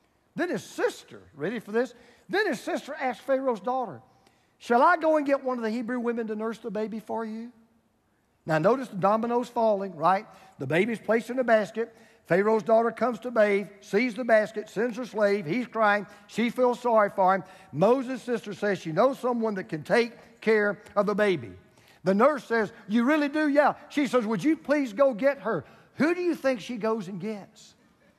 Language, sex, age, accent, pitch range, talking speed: English, male, 50-69, American, 190-250 Hz, 200 wpm